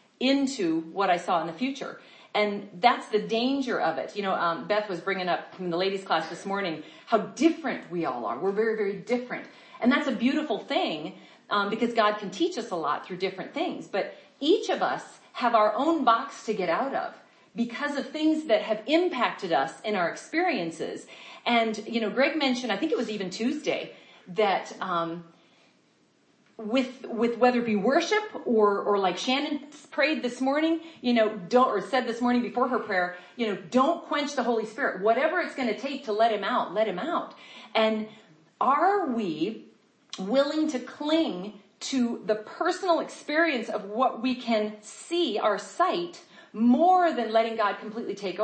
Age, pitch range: 40-59, 215-290 Hz